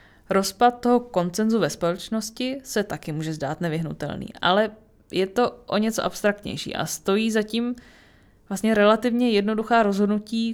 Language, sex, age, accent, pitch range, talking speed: Czech, female, 20-39, native, 180-220 Hz, 130 wpm